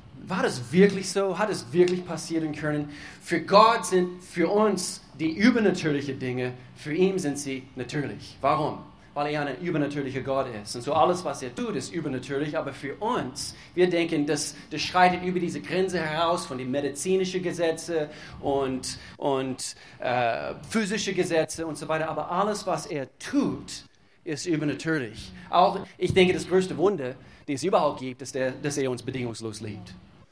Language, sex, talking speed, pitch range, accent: German, male, 170 wpm, 140-180 Hz, German